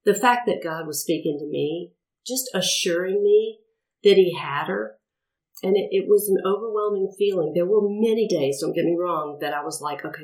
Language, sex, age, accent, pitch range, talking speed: English, female, 40-59, American, 155-205 Hz, 205 wpm